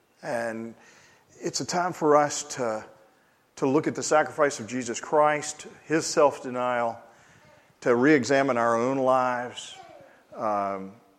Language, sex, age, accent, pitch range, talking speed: English, male, 50-69, American, 115-165 Hz, 125 wpm